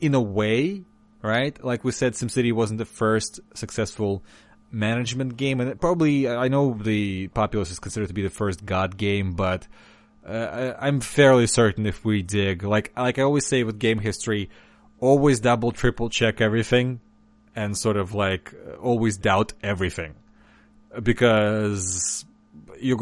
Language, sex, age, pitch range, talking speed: English, male, 30-49, 90-115 Hz, 150 wpm